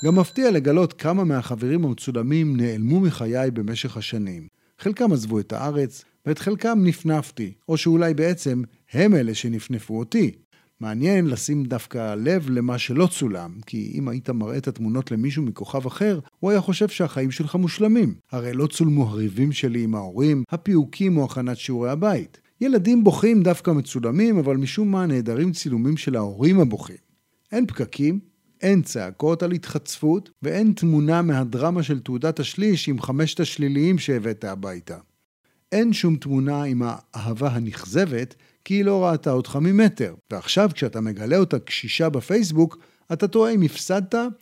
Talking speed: 145 wpm